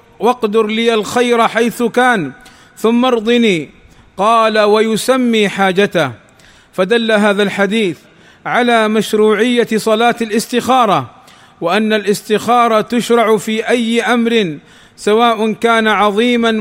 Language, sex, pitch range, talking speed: Arabic, male, 210-235 Hz, 95 wpm